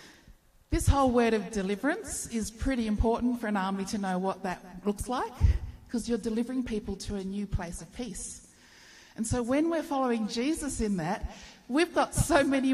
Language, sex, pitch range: English, female, 210-270 Hz